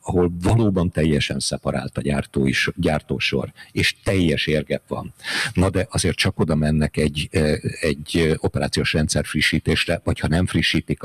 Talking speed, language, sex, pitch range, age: 145 wpm, Hungarian, male, 75-90 Hz, 50-69